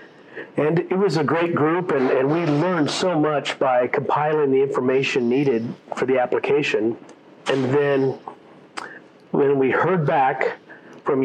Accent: American